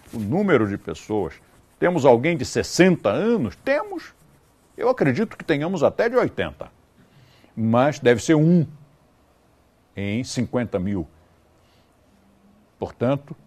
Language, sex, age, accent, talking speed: Portuguese, male, 60-79, Brazilian, 110 wpm